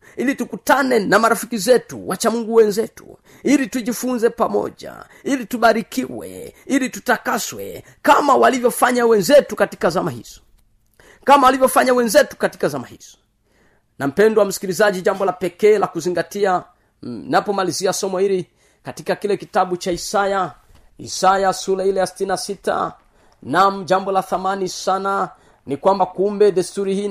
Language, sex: Swahili, male